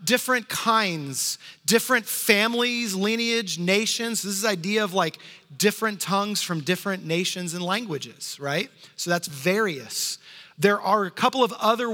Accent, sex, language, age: American, male, English, 30-49